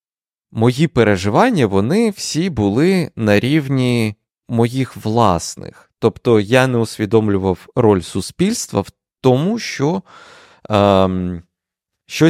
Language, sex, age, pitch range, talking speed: Ukrainian, male, 20-39, 100-130 Hz, 100 wpm